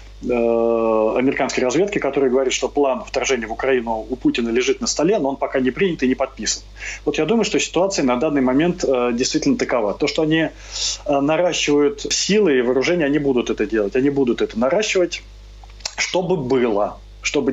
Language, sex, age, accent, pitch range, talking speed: Ukrainian, male, 20-39, native, 130-165 Hz, 170 wpm